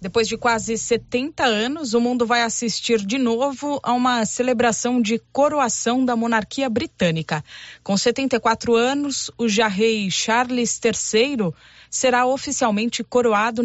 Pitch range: 215-255 Hz